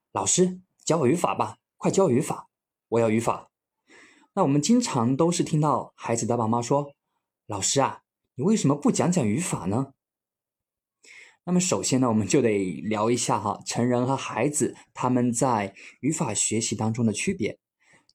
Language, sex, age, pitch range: Chinese, male, 20-39, 115-175 Hz